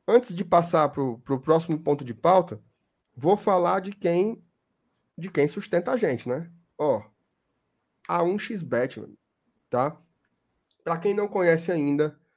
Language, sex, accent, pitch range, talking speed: Portuguese, male, Brazilian, 150-195 Hz, 130 wpm